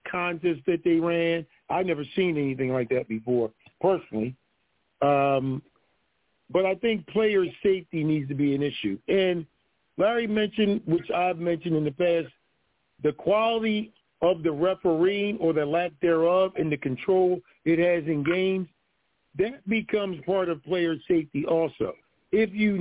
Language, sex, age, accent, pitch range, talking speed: English, male, 50-69, American, 165-205 Hz, 150 wpm